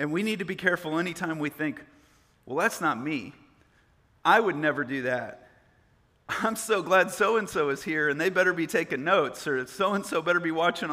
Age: 40-59